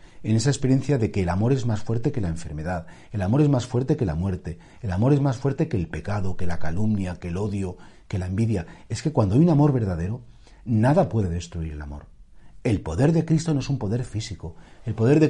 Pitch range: 95-140 Hz